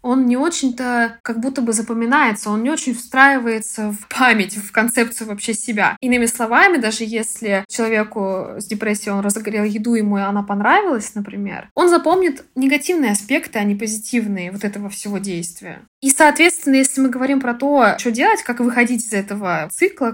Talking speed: 165 wpm